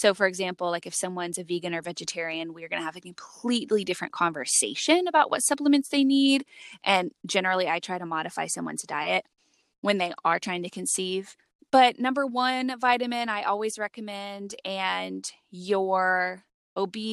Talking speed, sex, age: 165 wpm, female, 20-39